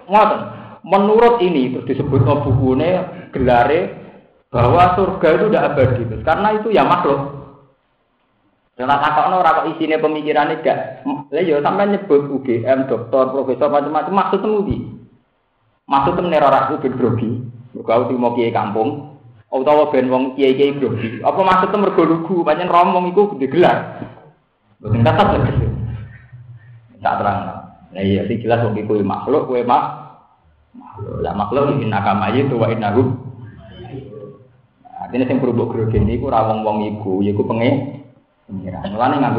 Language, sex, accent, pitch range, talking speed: Indonesian, male, native, 115-165 Hz, 115 wpm